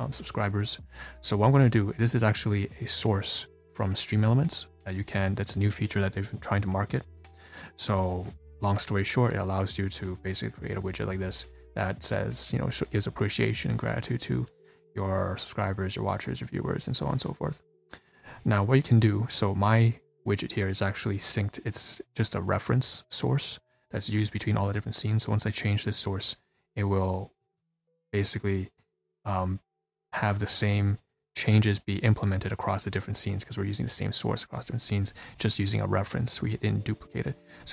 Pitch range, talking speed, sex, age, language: 95-115 Hz, 200 wpm, male, 20-39, English